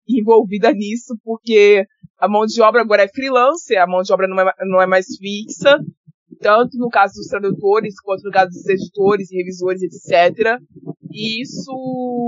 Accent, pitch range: Brazilian, 185-230 Hz